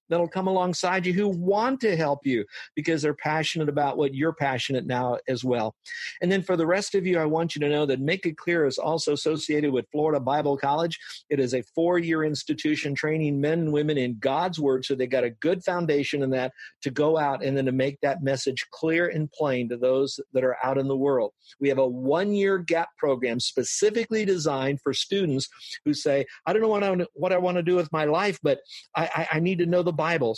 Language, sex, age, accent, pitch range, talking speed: English, male, 50-69, American, 135-175 Hz, 225 wpm